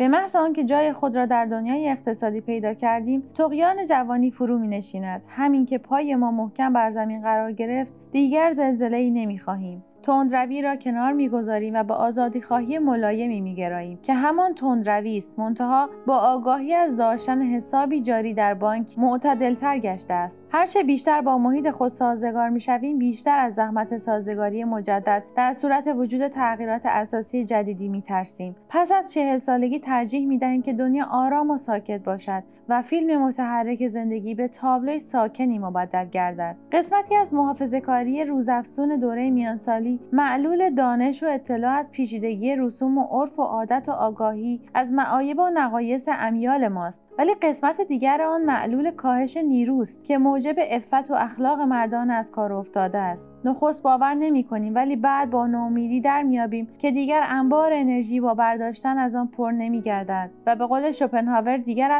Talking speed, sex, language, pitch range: 155 wpm, female, Persian, 225-275 Hz